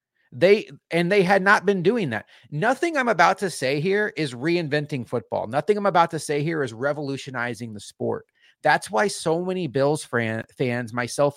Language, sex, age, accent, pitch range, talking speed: English, male, 30-49, American, 125-165 Hz, 180 wpm